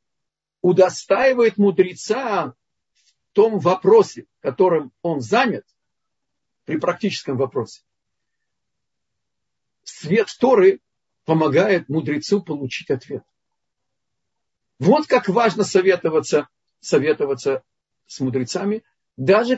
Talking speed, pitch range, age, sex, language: 75 wpm, 130-200 Hz, 50-69, male, Russian